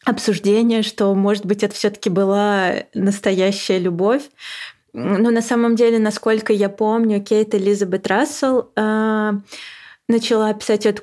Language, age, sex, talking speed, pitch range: Russian, 20-39, female, 120 wpm, 190-220 Hz